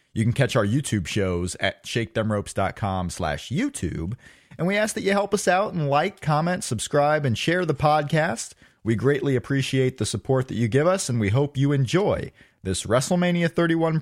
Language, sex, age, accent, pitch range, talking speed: English, male, 30-49, American, 125-160 Hz, 185 wpm